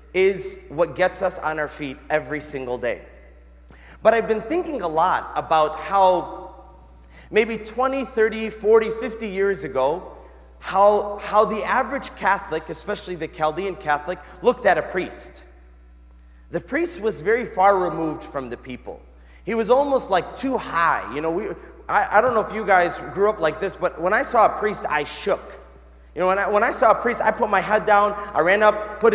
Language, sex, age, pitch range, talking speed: English, male, 30-49, 155-220 Hz, 190 wpm